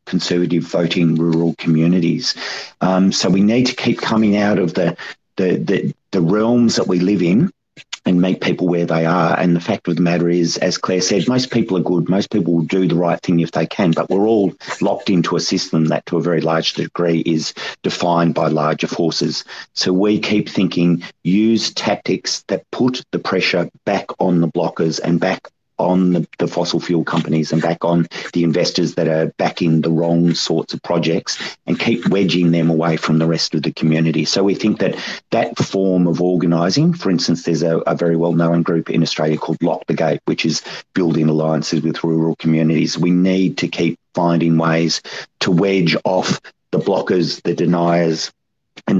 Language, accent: English, Australian